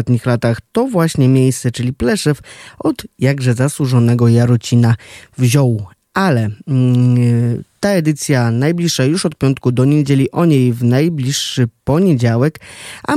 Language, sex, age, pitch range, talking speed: Polish, male, 20-39, 120-145 Hz, 130 wpm